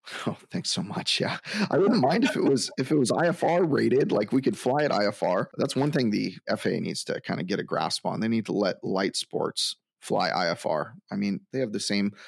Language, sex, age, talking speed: English, male, 30-49, 240 wpm